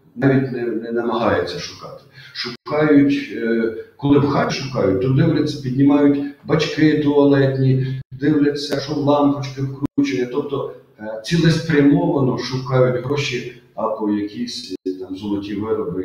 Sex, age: male, 40-59